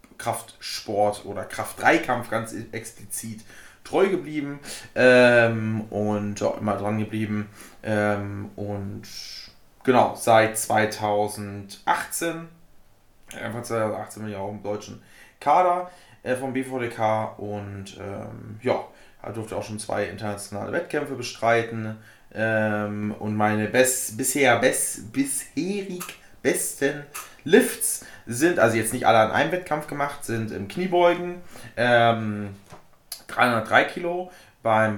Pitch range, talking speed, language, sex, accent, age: 105-125 Hz, 110 wpm, German, male, German, 20-39